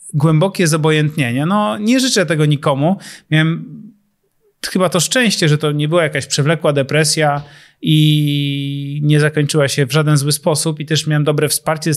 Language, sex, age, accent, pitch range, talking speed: Polish, male, 30-49, native, 145-170 Hz, 155 wpm